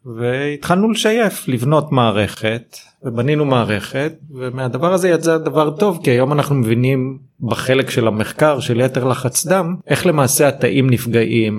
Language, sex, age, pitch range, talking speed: Hebrew, male, 30-49, 120-160 Hz, 135 wpm